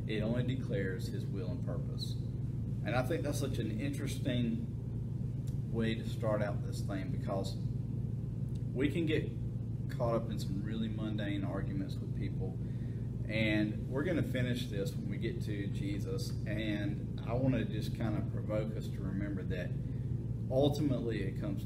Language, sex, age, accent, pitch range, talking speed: English, male, 40-59, American, 115-130 Hz, 160 wpm